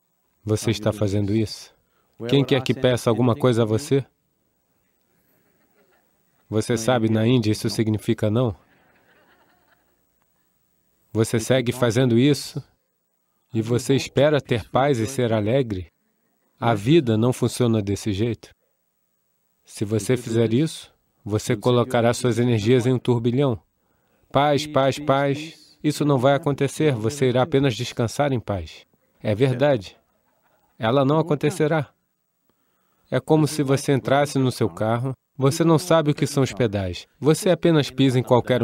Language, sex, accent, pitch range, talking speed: English, male, Brazilian, 110-140 Hz, 135 wpm